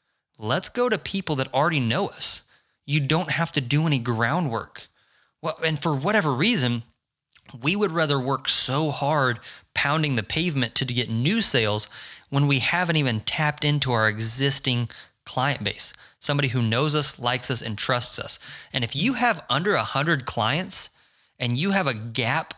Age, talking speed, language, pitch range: 30-49, 170 wpm, English, 125-155 Hz